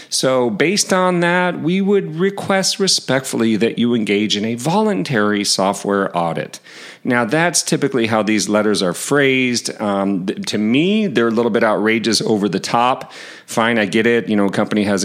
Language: English